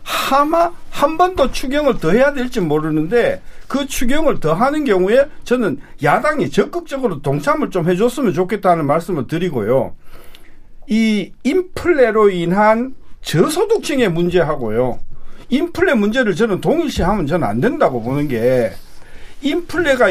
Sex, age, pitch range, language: male, 50-69, 170-265 Hz, Korean